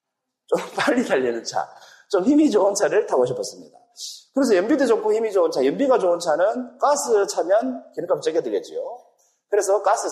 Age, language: 40-59, Korean